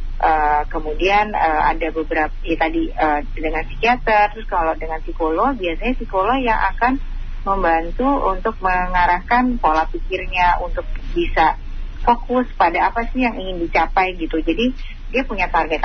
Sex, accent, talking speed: female, native, 140 wpm